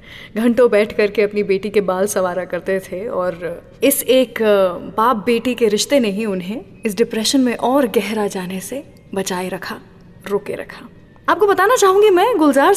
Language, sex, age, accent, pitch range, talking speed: English, female, 20-39, Indian, 200-265 Hz, 165 wpm